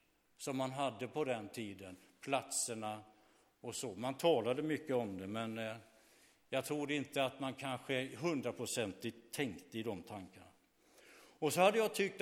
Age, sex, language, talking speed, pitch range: 60-79, male, Swedish, 150 wpm, 120-150 Hz